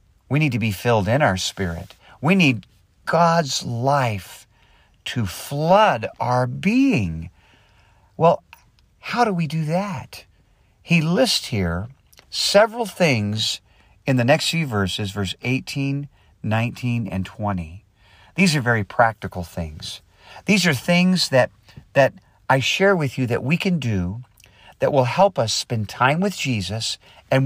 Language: English